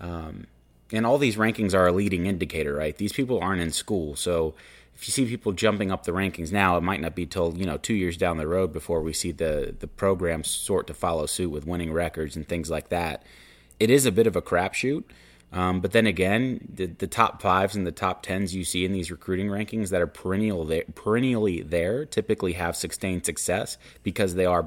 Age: 30-49